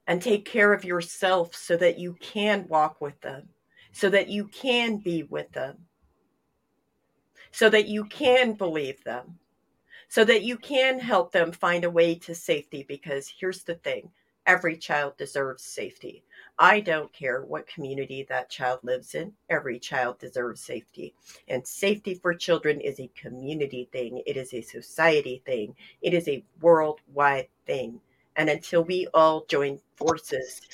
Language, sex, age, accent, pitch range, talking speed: English, female, 40-59, American, 150-205 Hz, 160 wpm